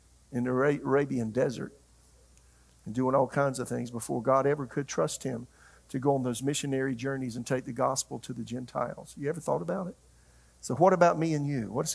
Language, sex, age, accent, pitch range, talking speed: English, male, 50-69, American, 120-145 Hz, 205 wpm